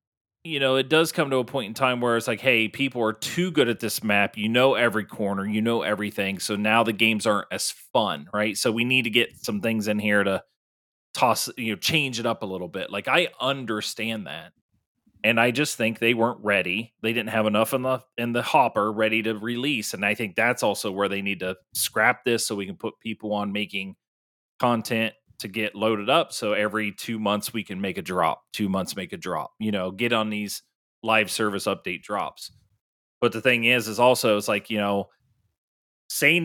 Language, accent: English, American